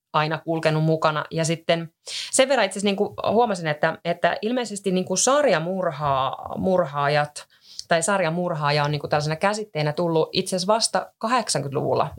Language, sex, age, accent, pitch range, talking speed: Finnish, female, 30-49, native, 150-185 Hz, 130 wpm